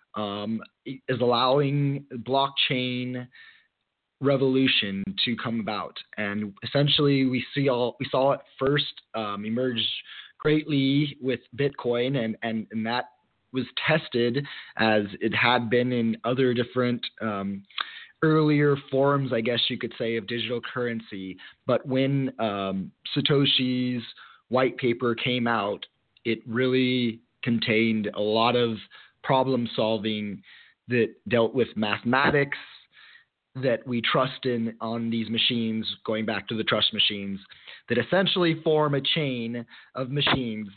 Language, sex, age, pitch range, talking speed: English, male, 20-39, 110-135 Hz, 125 wpm